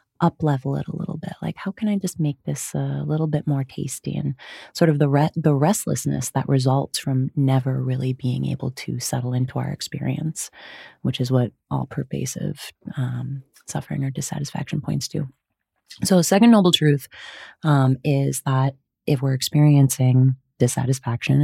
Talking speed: 165 wpm